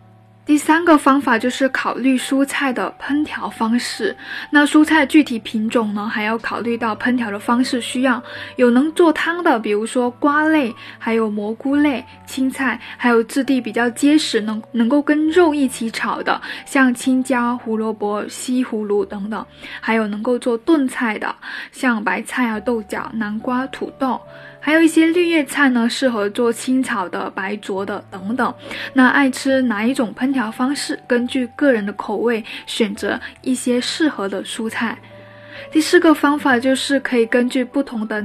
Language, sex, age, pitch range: Chinese, female, 10-29, 225-270 Hz